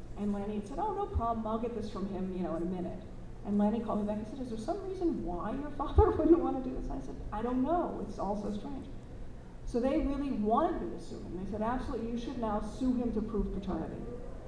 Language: English